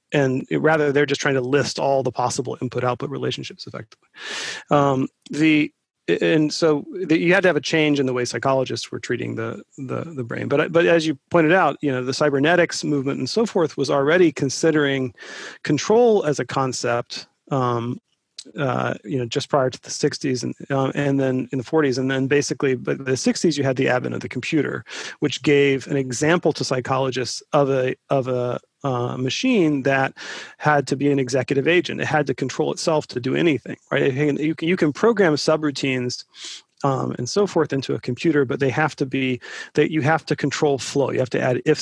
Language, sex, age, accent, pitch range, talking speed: English, male, 40-59, American, 130-155 Hz, 205 wpm